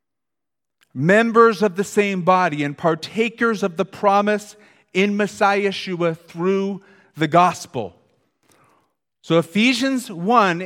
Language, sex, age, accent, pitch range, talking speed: English, male, 40-59, American, 180-230 Hz, 105 wpm